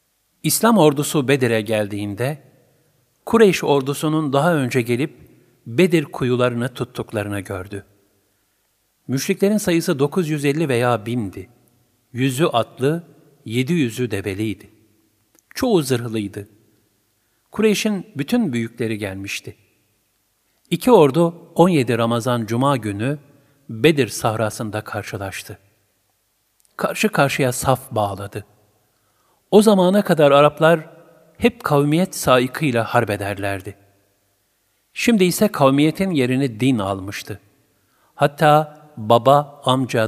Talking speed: 90 wpm